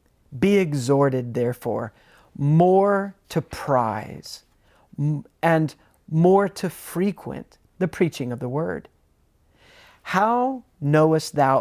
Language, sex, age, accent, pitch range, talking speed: English, male, 40-59, American, 145-205 Hz, 95 wpm